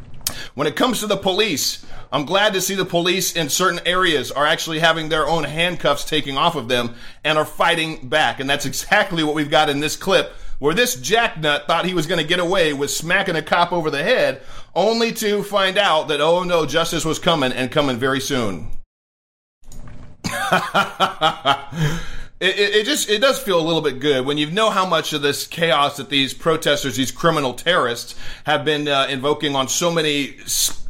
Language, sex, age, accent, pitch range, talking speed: English, male, 40-59, American, 140-185 Hz, 195 wpm